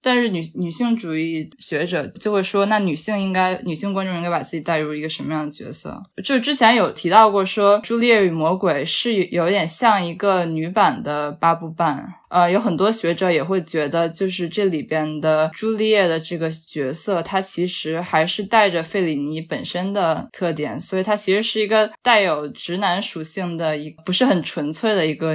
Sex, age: female, 10-29